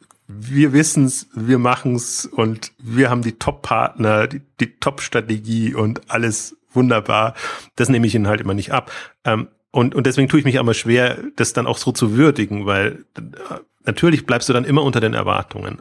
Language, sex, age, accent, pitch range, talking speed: German, male, 30-49, German, 110-140 Hz, 175 wpm